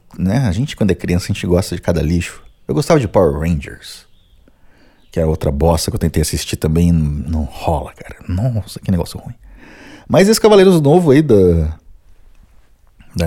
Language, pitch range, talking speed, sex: Portuguese, 85-115 Hz, 180 wpm, male